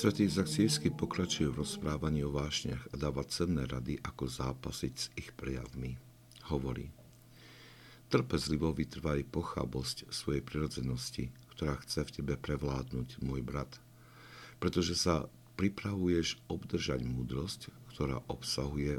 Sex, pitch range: male, 65-80 Hz